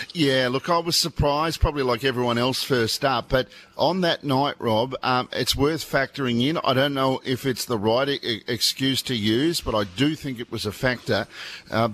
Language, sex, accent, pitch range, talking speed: English, male, Australian, 115-140 Hz, 200 wpm